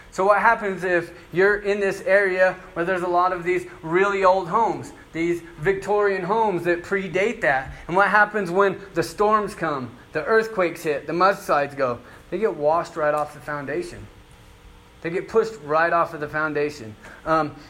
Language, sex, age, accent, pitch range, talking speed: English, male, 30-49, American, 150-190 Hz, 175 wpm